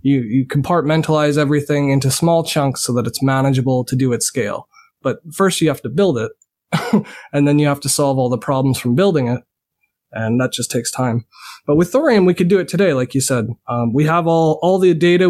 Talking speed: 225 wpm